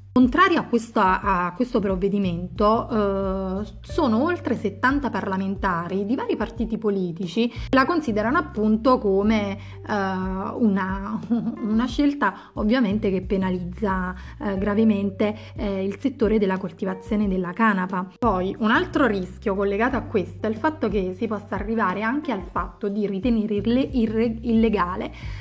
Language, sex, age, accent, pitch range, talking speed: Italian, female, 30-49, native, 190-235 Hz, 130 wpm